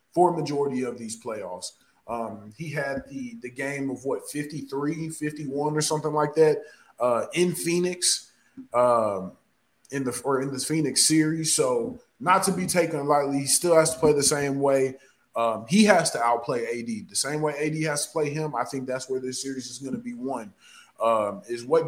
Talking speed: 195 wpm